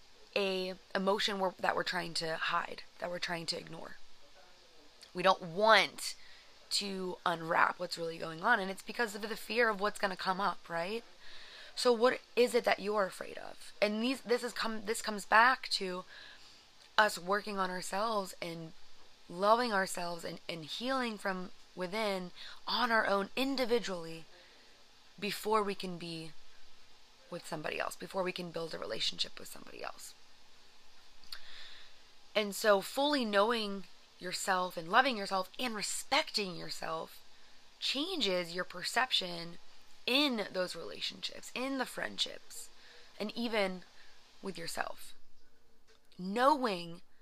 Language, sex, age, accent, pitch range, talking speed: English, female, 20-39, American, 175-220 Hz, 135 wpm